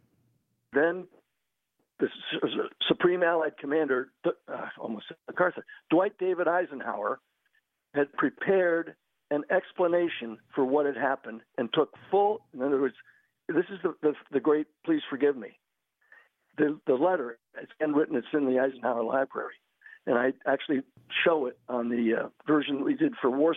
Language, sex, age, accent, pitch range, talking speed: English, male, 60-79, American, 135-185 Hz, 150 wpm